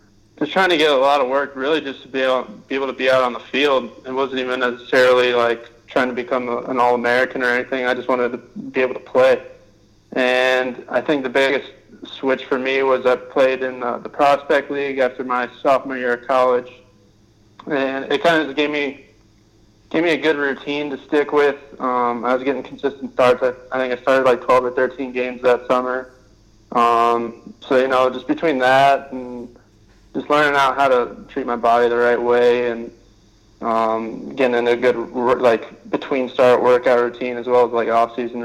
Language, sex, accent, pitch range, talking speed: English, male, American, 120-130 Hz, 200 wpm